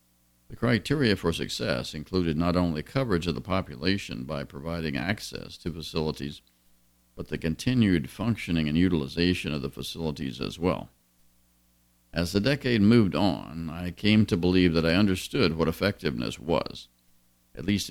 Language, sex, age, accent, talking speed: English, male, 50-69, American, 145 wpm